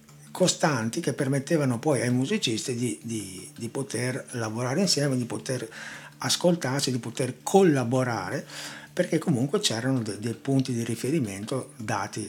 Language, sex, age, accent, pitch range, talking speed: Italian, male, 60-79, native, 110-140 Hz, 130 wpm